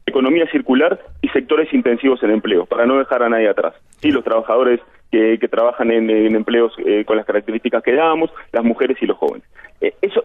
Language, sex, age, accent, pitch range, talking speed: Spanish, male, 30-49, Argentinian, 125-180 Hz, 205 wpm